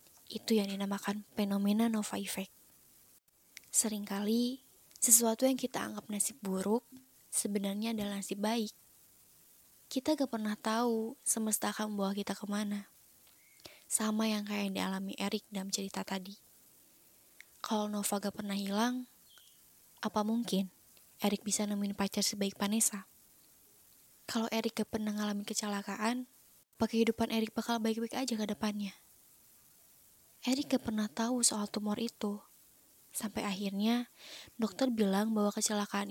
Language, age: Indonesian, 10-29